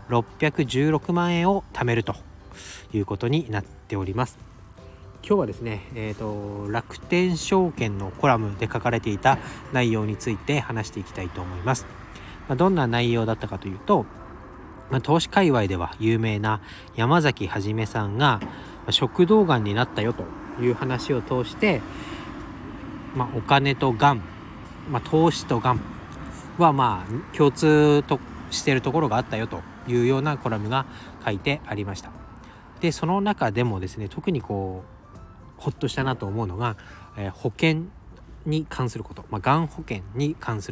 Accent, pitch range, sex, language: native, 105-140 Hz, male, Japanese